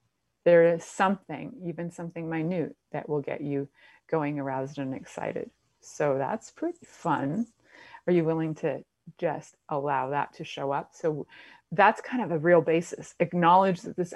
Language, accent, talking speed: English, American, 160 wpm